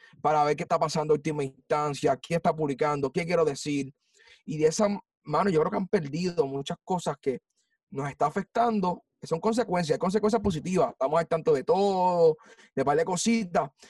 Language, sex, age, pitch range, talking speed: Spanish, male, 30-49, 155-210 Hz, 185 wpm